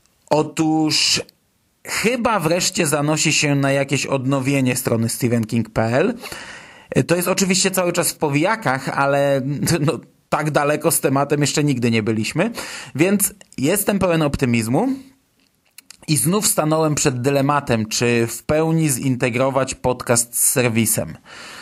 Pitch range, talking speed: 130-155 Hz, 120 wpm